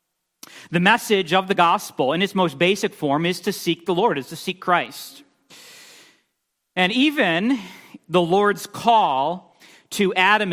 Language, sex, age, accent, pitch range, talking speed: English, male, 40-59, American, 155-190 Hz, 150 wpm